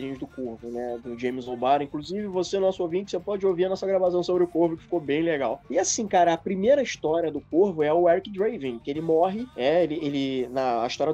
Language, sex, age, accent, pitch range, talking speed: Portuguese, male, 20-39, Brazilian, 150-190 Hz, 235 wpm